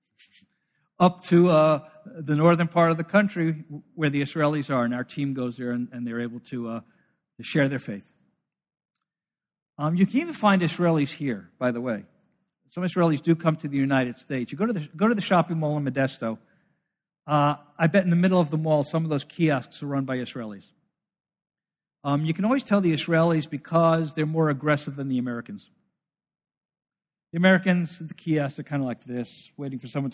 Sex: male